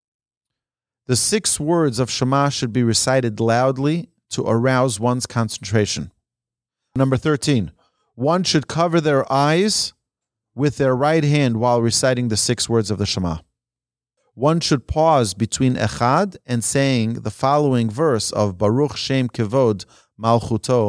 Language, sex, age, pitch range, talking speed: English, male, 40-59, 115-145 Hz, 135 wpm